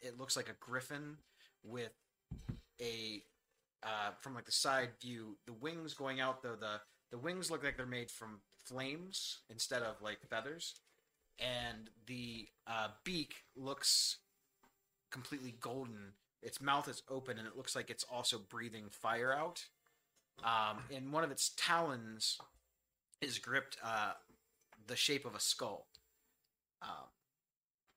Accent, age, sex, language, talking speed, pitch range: American, 30-49, male, English, 140 wpm, 110-140 Hz